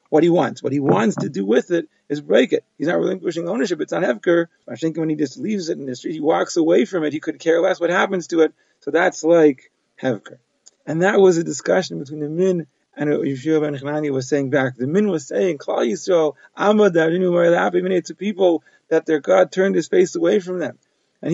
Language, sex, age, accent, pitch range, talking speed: English, male, 40-59, American, 155-185 Hz, 240 wpm